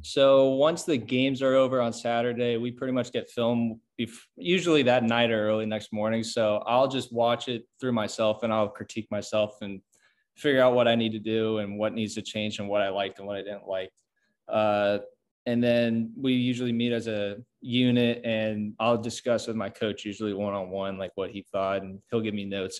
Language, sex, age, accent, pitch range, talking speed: English, male, 20-39, American, 105-120 Hz, 210 wpm